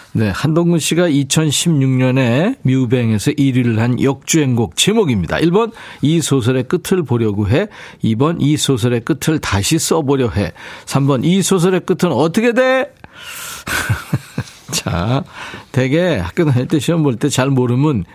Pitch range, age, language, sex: 120-165 Hz, 50-69, Korean, male